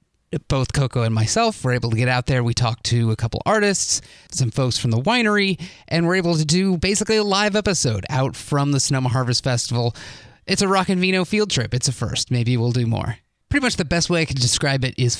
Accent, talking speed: American, 235 wpm